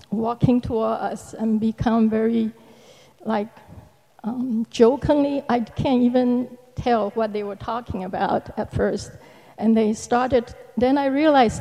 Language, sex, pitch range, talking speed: English, female, 225-265 Hz, 135 wpm